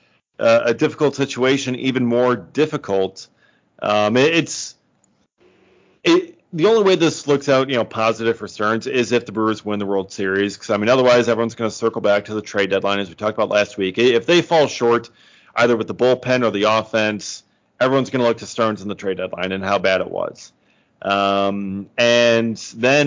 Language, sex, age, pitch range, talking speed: English, male, 30-49, 110-135 Hz, 205 wpm